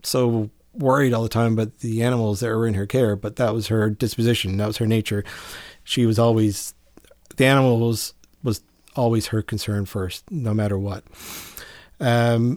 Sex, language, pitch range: male, English, 105-125 Hz